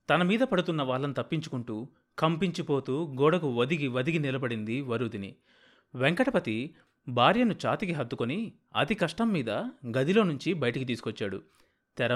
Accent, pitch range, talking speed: native, 125-165 Hz, 115 wpm